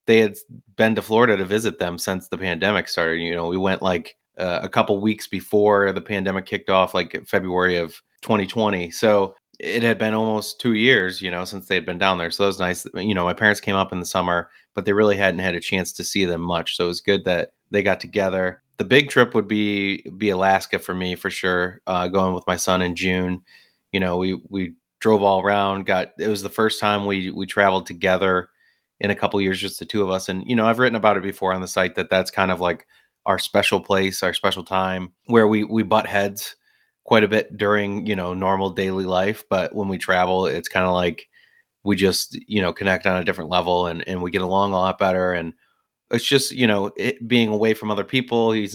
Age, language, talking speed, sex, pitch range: 30-49, English, 240 wpm, male, 90-105 Hz